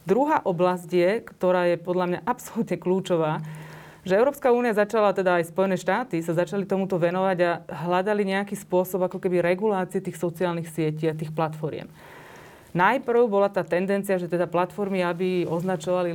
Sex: female